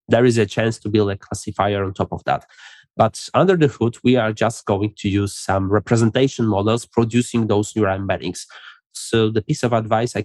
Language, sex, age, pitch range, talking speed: English, male, 20-39, 105-125 Hz, 205 wpm